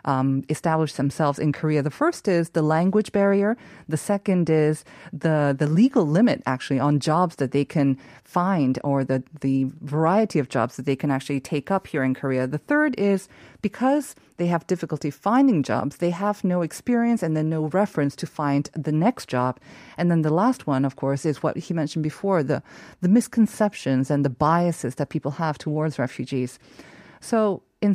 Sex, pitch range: female, 145-190 Hz